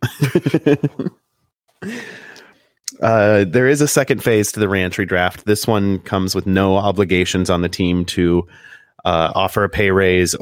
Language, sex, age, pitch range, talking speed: English, male, 30-49, 85-100 Hz, 145 wpm